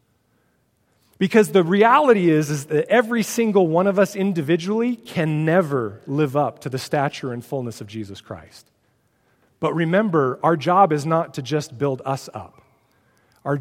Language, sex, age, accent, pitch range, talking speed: English, male, 40-59, American, 135-190 Hz, 160 wpm